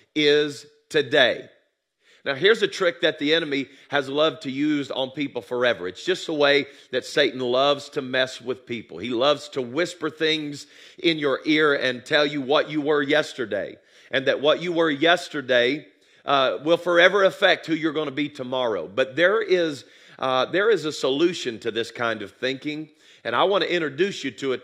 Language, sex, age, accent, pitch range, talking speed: English, male, 40-59, American, 135-170 Hz, 190 wpm